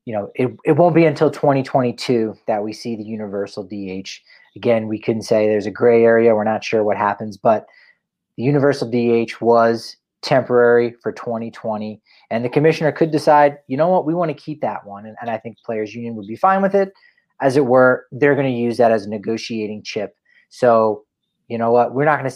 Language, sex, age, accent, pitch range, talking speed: English, male, 30-49, American, 115-140 Hz, 215 wpm